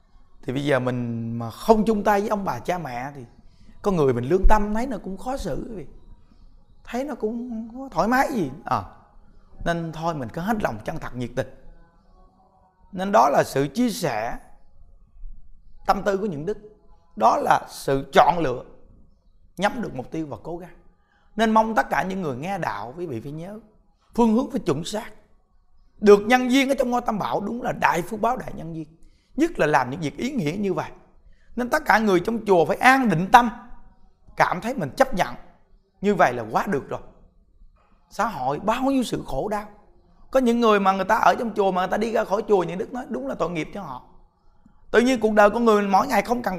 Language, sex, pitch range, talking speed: Vietnamese, male, 165-230 Hz, 220 wpm